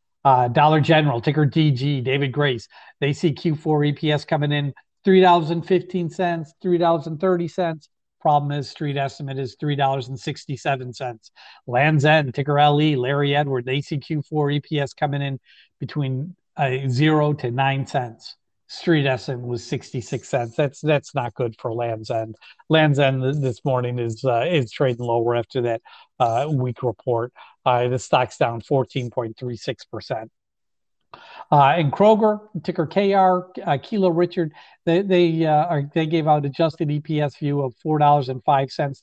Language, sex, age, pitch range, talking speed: English, male, 40-59, 125-155 Hz, 140 wpm